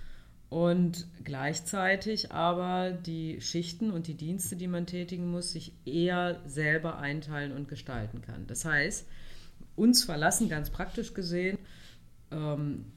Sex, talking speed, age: female, 125 wpm, 40-59